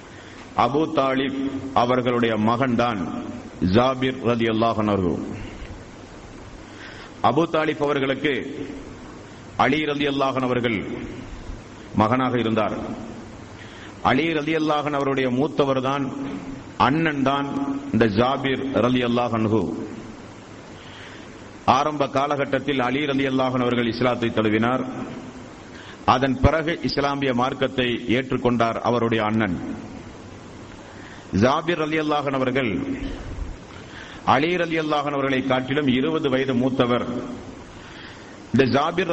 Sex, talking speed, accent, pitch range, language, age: male, 85 wpm, native, 120-150 Hz, Tamil, 50-69